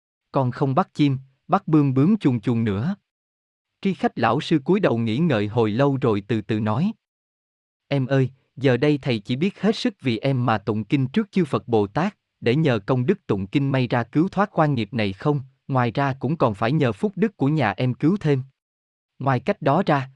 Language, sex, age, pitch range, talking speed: Vietnamese, male, 20-39, 115-160 Hz, 220 wpm